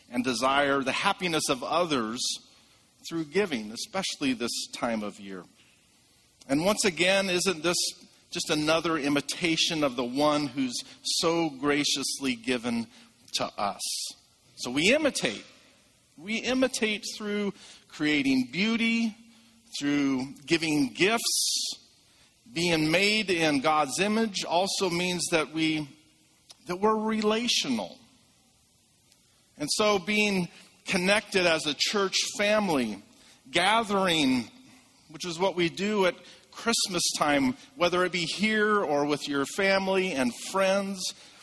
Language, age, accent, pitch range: English, 50-69, American, 145-210 Hz